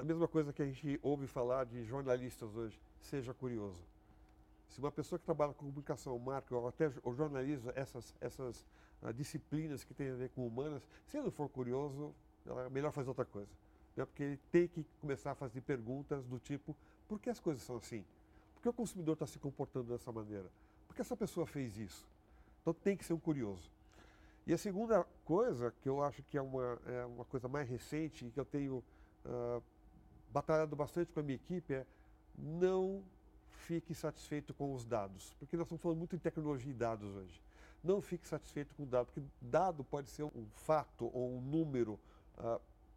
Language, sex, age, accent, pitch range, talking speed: Portuguese, male, 50-69, Brazilian, 125-160 Hz, 200 wpm